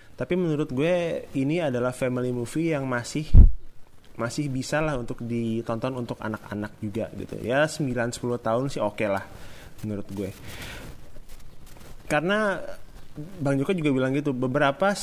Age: 20-39